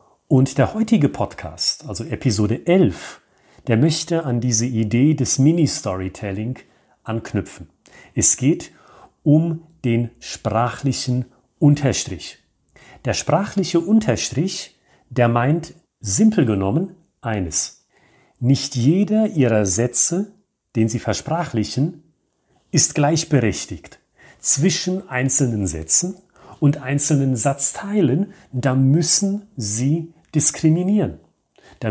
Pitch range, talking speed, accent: 110-165 Hz, 90 wpm, German